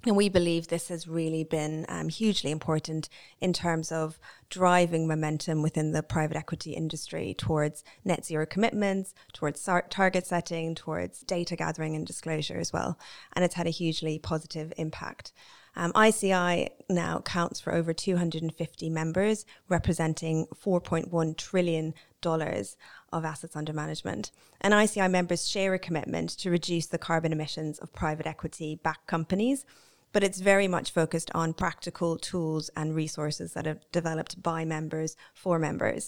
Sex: female